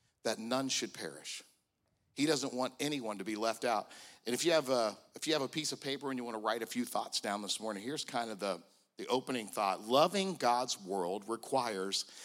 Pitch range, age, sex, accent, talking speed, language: 130-195 Hz, 50-69, male, American, 205 wpm, English